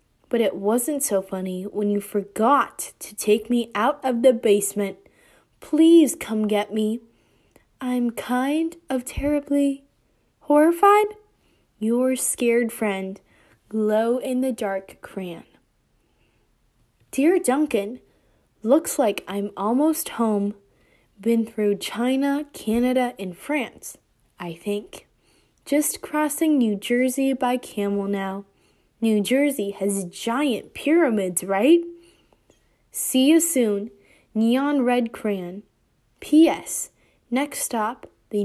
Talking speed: 110 wpm